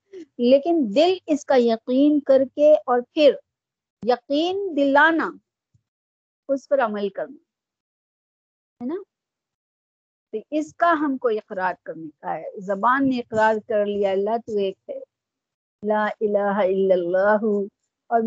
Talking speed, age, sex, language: 130 wpm, 50-69, female, Urdu